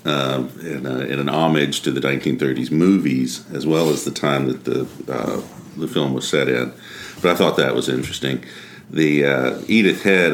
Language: English